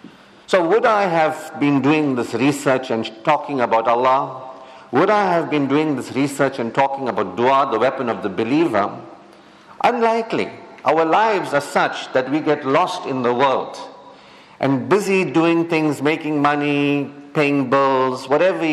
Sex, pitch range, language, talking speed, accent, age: male, 130-155 Hz, English, 155 wpm, Indian, 50-69